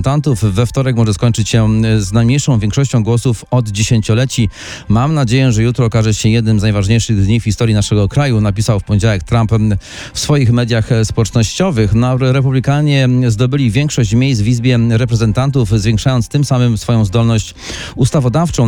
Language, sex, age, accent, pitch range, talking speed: Polish, male, 40-59, native, 110-130 Hz, 150 wpm